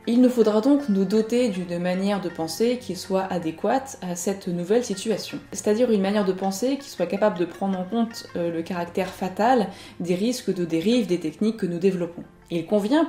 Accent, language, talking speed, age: French, French, 195 wpm, 20-39